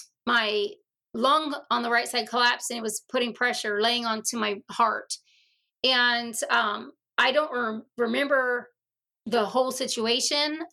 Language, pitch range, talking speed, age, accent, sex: English, 225-270 Hz, 135 wpm, 30-49, American, female